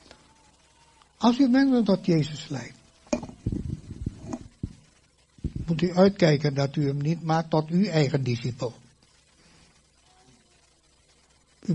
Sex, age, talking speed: male, 60-79, 95 wpm